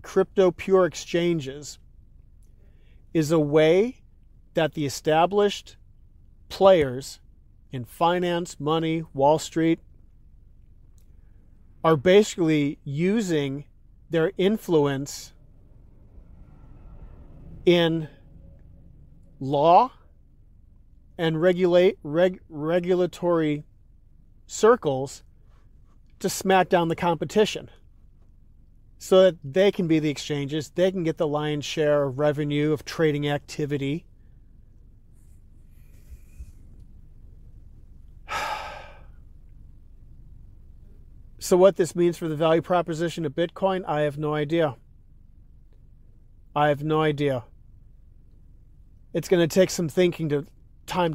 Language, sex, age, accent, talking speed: English, male, 40-59, American, 90 wpm